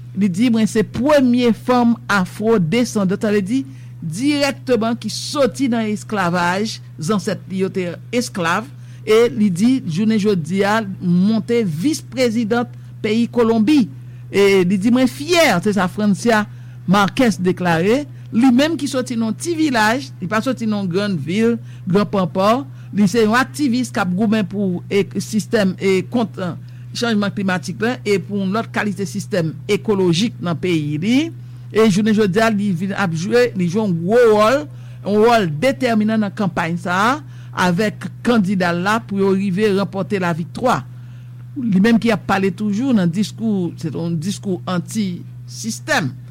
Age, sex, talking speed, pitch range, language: 60-79, male, 145 wpm, 170-225 Hz, English